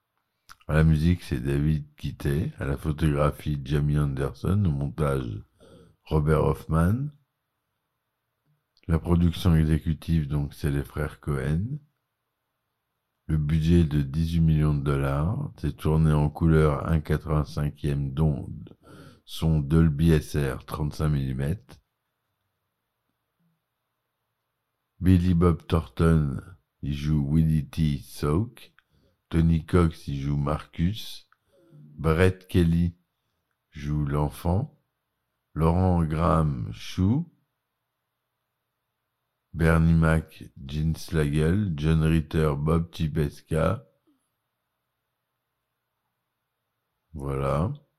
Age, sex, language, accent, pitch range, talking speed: 60-79, male, French, French, 75-90 Hz, 85 wpm